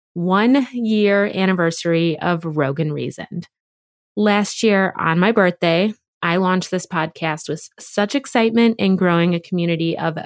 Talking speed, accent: 130 wpm, American